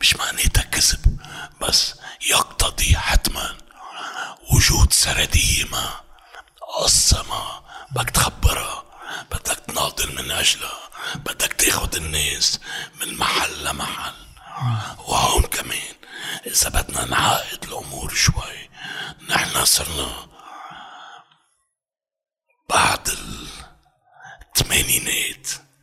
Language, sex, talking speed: Arabic, male, 80 wpm